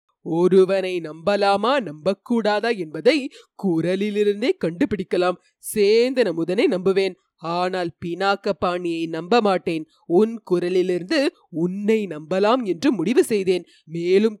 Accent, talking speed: native, 95 wpm